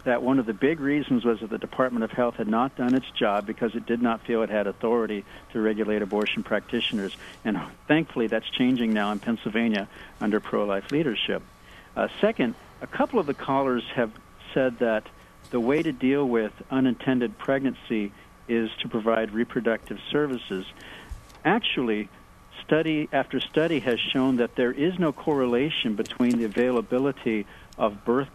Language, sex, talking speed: English, male, 165 wpm